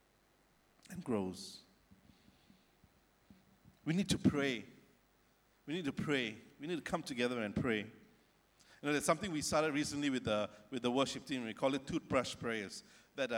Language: English